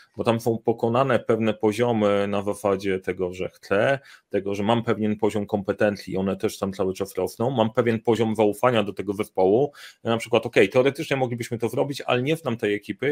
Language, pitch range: Polish, 105-120 Hz